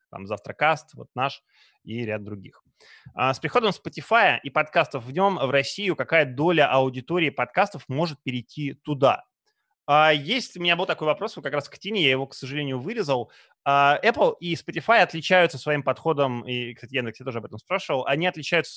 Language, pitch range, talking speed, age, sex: Russian, 125-165 Hz, 175 wpm, 20-39, male